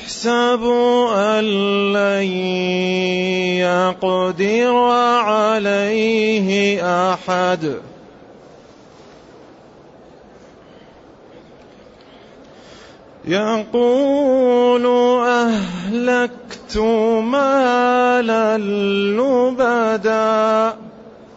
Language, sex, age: Arabic, male, 30-49